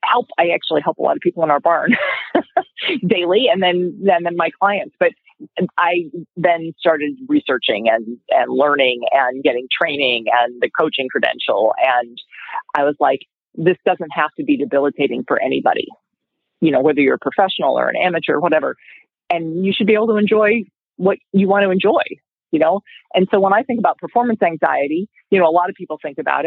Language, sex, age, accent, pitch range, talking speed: English, female, 40-59, American, 145-175 Hz, 195 wpm